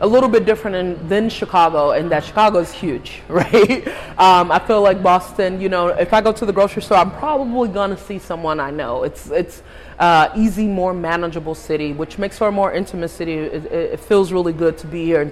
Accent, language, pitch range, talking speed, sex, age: American, English, 160-205 Hz, 220 wpm, female, 20-39